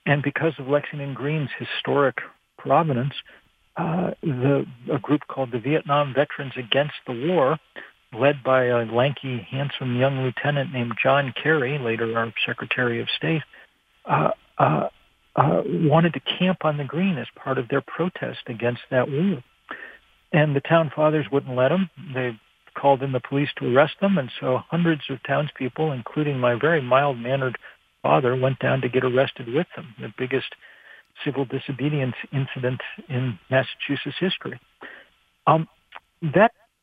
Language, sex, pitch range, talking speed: English, male, 125-155 Hz, 150 wpm